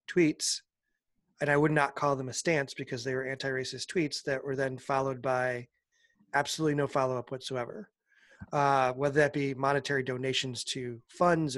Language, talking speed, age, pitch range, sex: English, 160 wpm, 30-49, 140-185 Hz, male